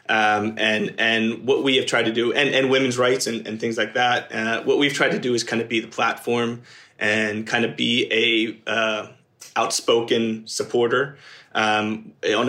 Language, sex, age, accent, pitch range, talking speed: English, male, 20-39, American, 110-125 Hz, 190 wpm